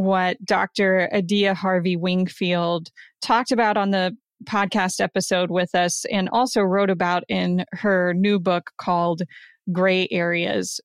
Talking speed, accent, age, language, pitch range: 125 wpm, American, 20-39, English, 185-215 Hz